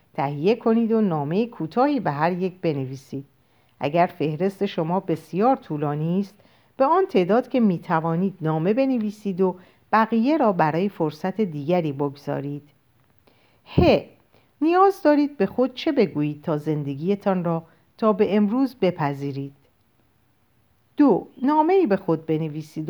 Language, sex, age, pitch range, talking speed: Persian, female, 50-69, 145-210 Hz, 130 wpm